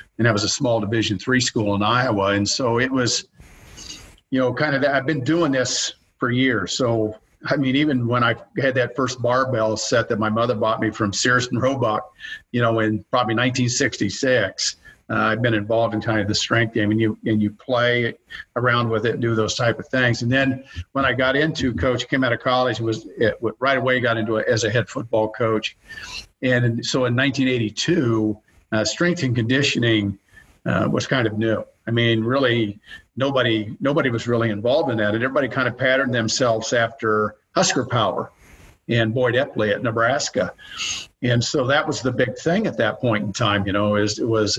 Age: 50-69